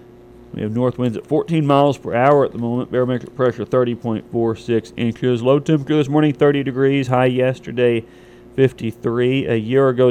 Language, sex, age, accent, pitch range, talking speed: English, male, 40-59, American, 115-130 Hz, 165 wpm